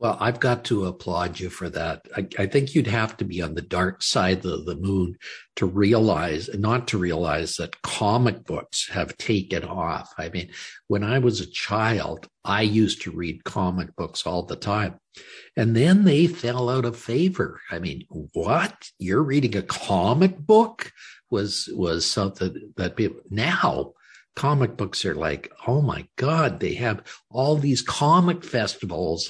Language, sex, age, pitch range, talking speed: English, male, 60-79, 100-135 Hz, 170 wpm